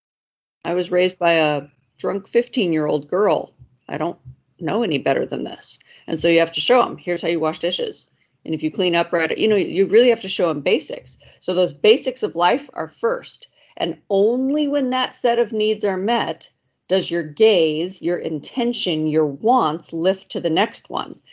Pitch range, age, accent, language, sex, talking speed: 165-220 Hz, 40-59, American, English, female, 195 wpm